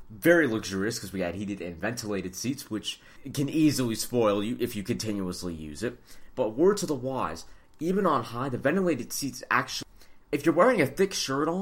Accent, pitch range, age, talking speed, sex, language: American, 90-135 Hz, 30-49, 195 wpm, male, English